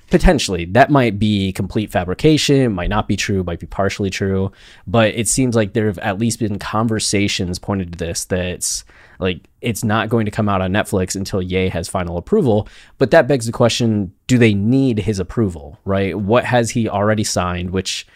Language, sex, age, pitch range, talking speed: English, male, 20-39, 95-115 Hz, 195 wpm